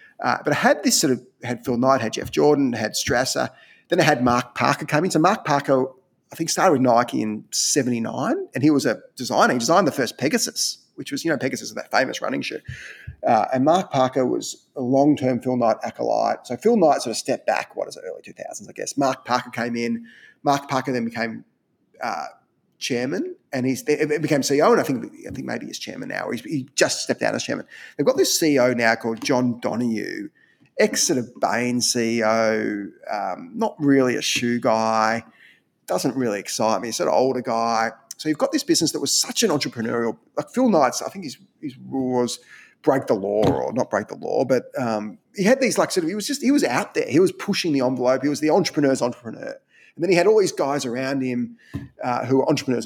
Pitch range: 120-195 Hz